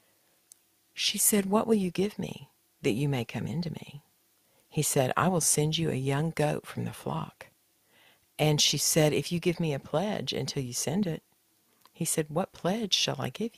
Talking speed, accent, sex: 205 wpm, American, female